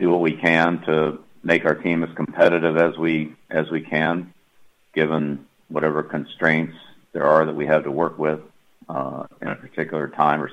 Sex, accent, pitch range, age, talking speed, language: male, American, 75-85 Hz, 50-69, 180 wpm, English